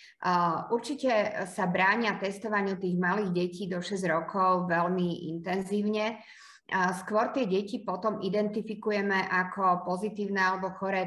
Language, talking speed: Slovak, 115 wpm